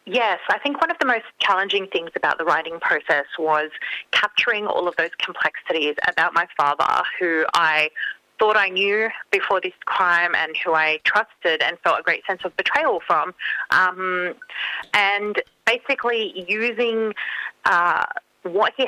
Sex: female